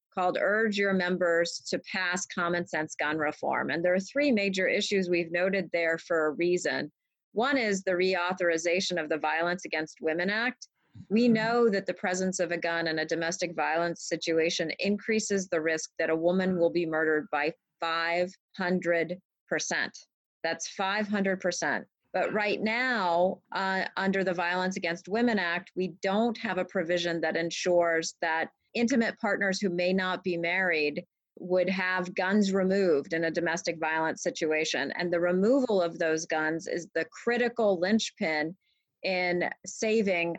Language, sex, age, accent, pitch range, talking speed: English, female, 30-49, American, 165-195 Hz, 155 wpm